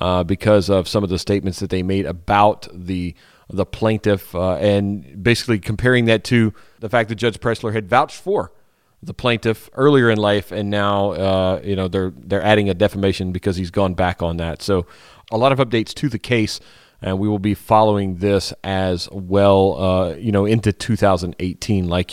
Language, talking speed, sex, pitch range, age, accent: English, 195 wpm, male, 95-115 Hz, 30-49, American